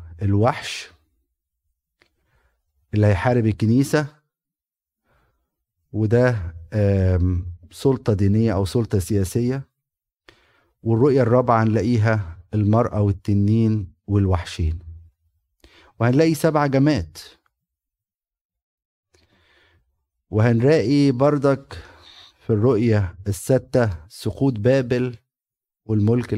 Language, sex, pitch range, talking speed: Arabic, male, 95-130 Hz, 60 wpm